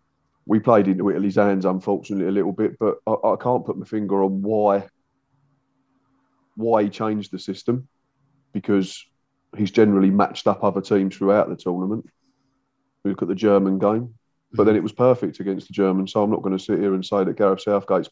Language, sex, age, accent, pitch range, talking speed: English, male, 30-49, British, 95-125 Hz, 190 wpm